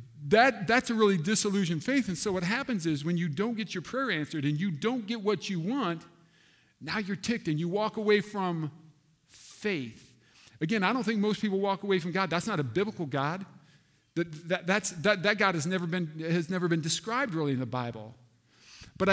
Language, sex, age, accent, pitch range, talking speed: English, male, 50-69, American, 150-205 Hz, 210 wpm